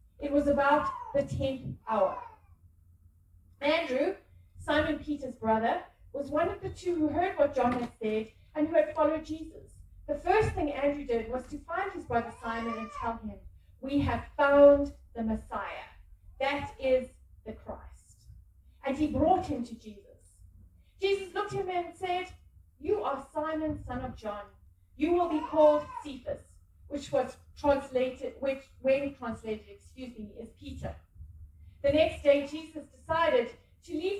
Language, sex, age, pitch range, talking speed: English, female, 30-49, 225-315 Hz, 155 wpm